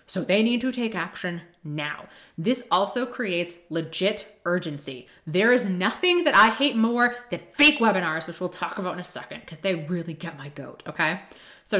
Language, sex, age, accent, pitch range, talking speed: English, female, 20-39, American, 165-210 Hz, 190 wpm